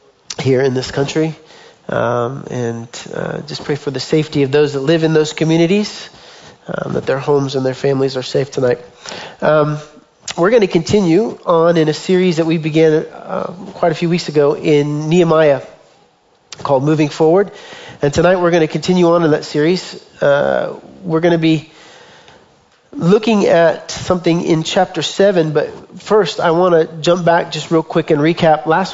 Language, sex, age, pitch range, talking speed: English, male, 40-59, 150-185 Hz, 180 wpm